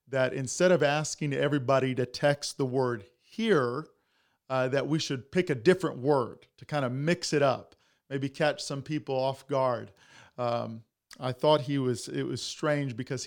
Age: 40-59